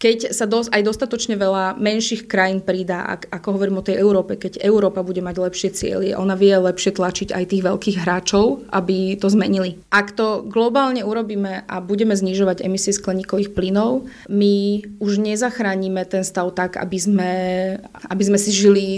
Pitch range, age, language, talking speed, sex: 190-215 Hz, 20-39, Slovak, 170 wpm, female